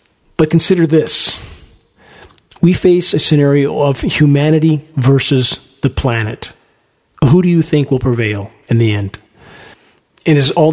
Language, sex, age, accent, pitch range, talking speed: English, male, 40-59, American, 135-160 Hz, 135 wpm